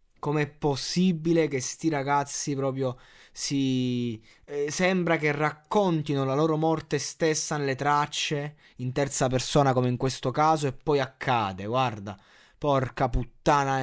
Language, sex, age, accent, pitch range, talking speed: Italian, male, 20-39, native, 115-150 Hz, 130 wpm